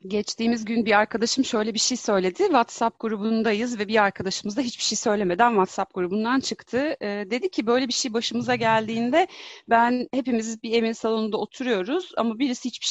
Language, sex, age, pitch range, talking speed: Turkish, female, 30-49, 185-255 Hz, 170 wpm